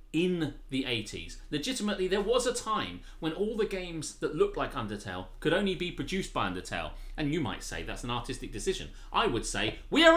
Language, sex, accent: English, male, British